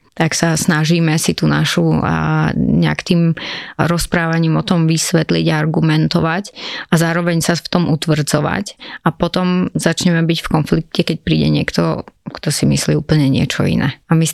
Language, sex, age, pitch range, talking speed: Slovak, female, 30-49, 150-175 Hz, 160 wpm